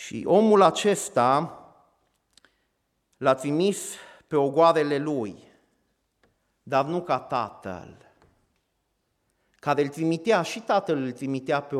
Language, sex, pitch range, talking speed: Romanian, male, 110-140 Hz, 100 wpm